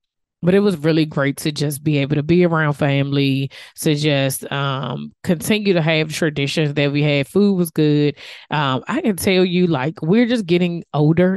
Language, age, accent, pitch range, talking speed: English, 20-39, American, 140-165 Hz, 190 wpm